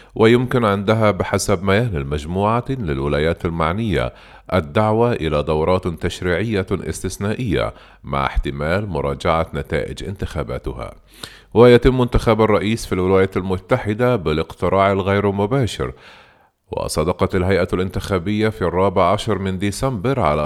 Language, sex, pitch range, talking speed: Arabic, male, 85-110 Hz, 105 wpm